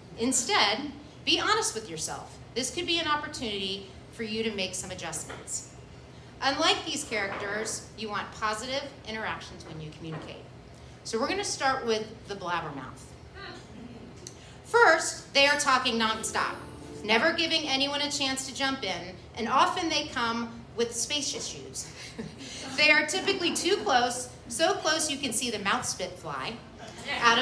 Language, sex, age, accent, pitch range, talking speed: English, female, 30-49, American, 205-300 Hz, 150 wpm